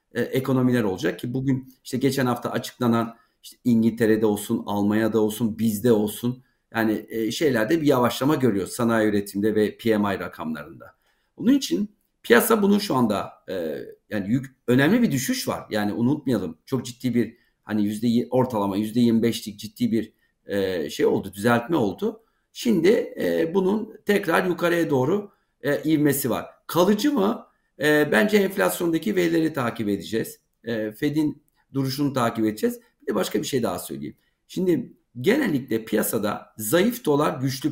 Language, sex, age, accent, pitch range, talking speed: Turkish, male, 50-69, native, 110-150 Hz, 145 wpm